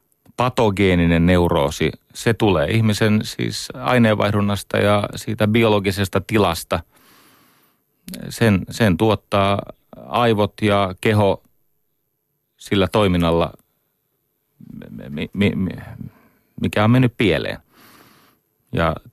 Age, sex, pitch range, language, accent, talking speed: 30-49, male, 90-110 Hz, Finnish, native, 75 wpm